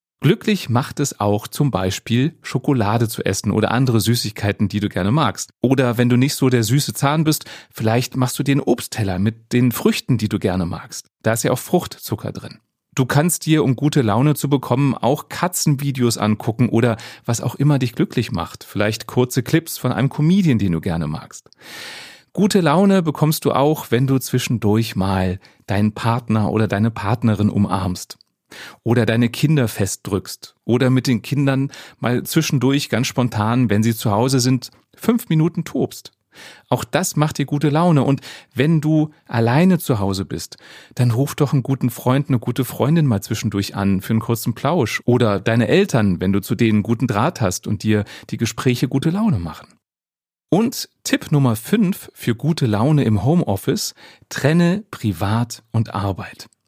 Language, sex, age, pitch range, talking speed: German, male, 30-49, 110-145 Hz, 175 wpm